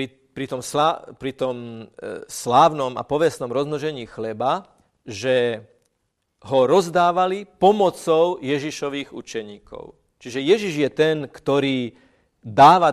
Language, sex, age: Slovak, male, 40-59